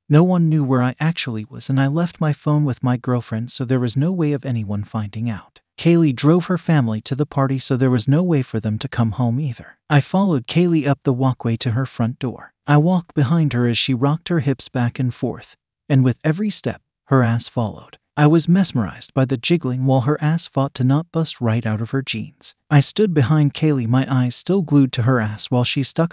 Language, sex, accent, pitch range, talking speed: English, male, American, 120-155 Hz, 235 wpm